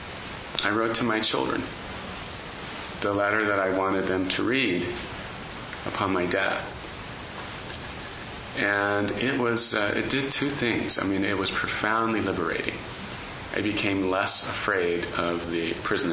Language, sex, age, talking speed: English, male, 30-49, 140 wpm